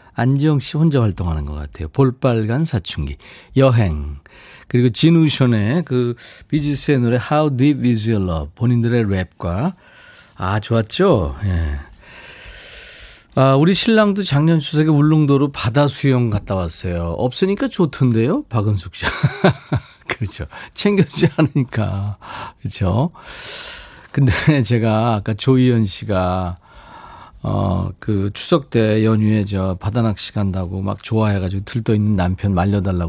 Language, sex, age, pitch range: Korean, male, 40-59, 100-145 Hz